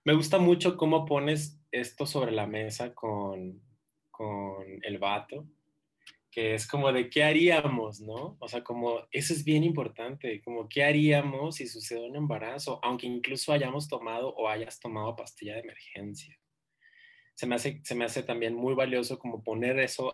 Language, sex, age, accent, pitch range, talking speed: Spanish, male, 20-39, Mexican, 110-150 Hz, 165 wpm